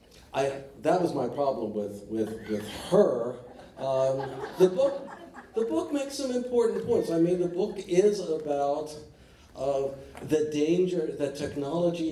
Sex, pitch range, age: male, 110-155 Hz, 60-79